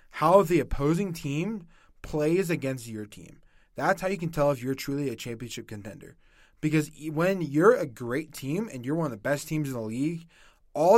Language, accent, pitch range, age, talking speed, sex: English, American, 135-165 Hz, 20-39, 195 wpm, male